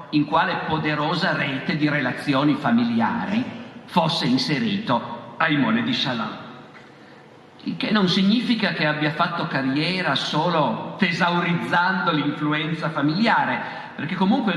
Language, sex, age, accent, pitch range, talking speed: Italian, male, 50-69, native, 150-205 Hz, 105 wpm